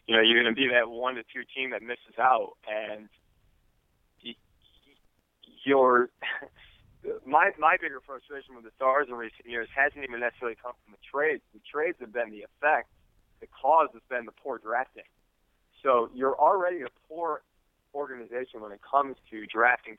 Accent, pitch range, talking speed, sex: American, 115-135 Hz, 170 wpm, male